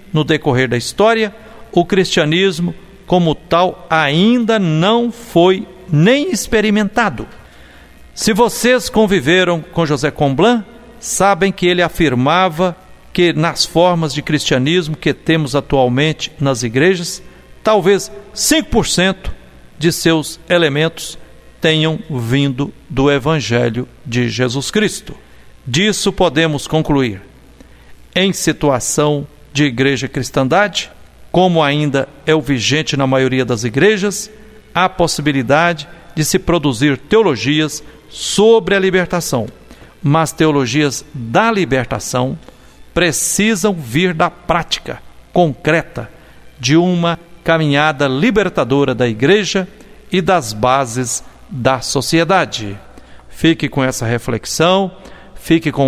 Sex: male